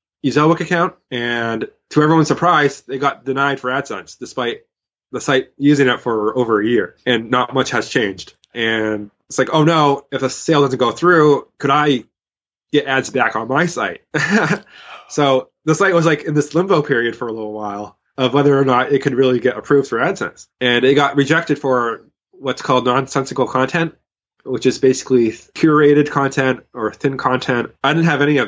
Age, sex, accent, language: 20-39, male, American, English